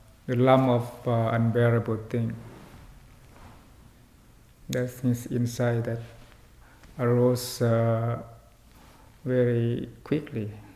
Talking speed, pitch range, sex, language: 80 wpm, 120-130 Hz, male, English